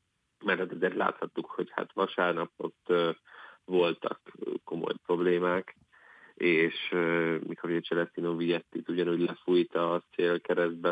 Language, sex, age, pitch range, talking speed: Hungarian, male, 30-49, 85-95 Hz, 105 wpm